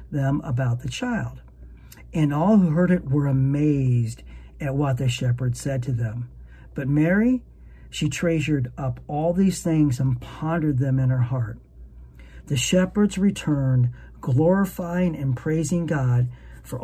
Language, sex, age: English, male, 50-69